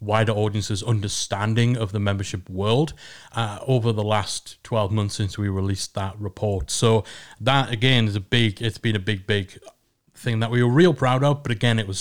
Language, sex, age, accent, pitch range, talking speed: English, male, 30-49, British, 110-130 Hz, 200 wpm